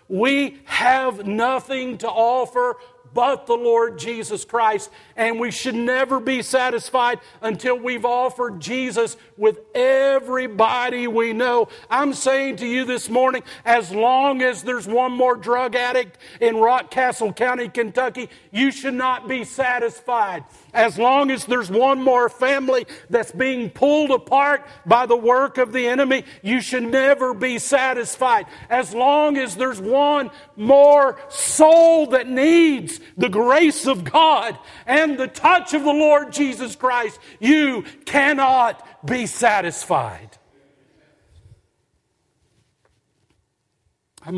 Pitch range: 160-260 Hz